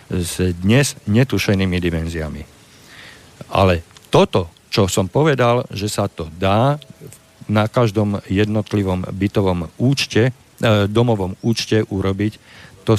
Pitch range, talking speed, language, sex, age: 95-120 Hz, 100 wpm, Slovak, male, 50-69